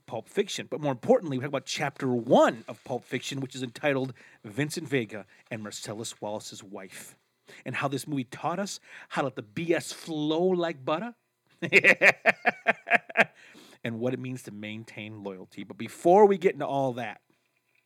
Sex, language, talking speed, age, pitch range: male, English, 170 wpm, 40-59, 125-165 Hz